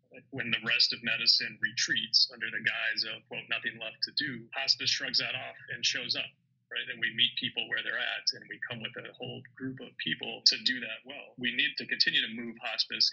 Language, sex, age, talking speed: English, male, 30-49, 230 wpm